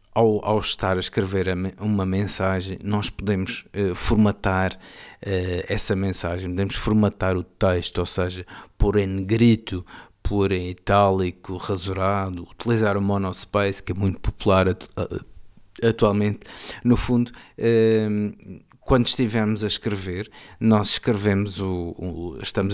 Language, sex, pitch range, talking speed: Portuguese, male, 95-105 Hz, 110 wpm